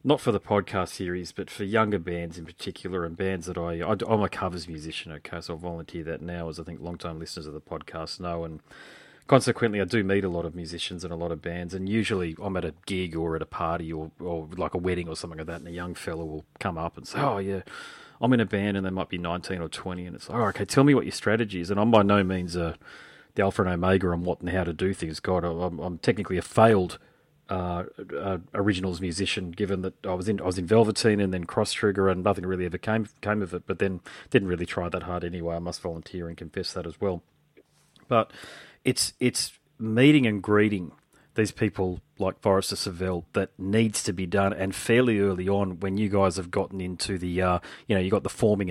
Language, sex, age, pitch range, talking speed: English, male, 30-49, 85-100 Hz, 245 wpm